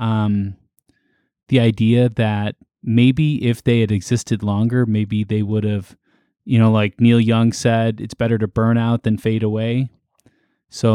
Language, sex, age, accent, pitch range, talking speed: English, male, 20-39, American, 110-130 Hz, 160 wpm